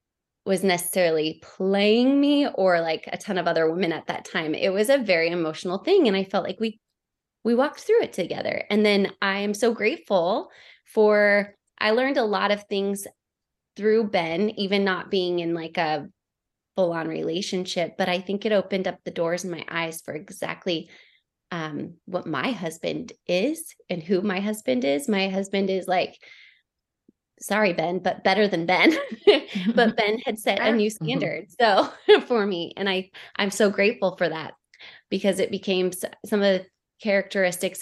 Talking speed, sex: 180 wpm, female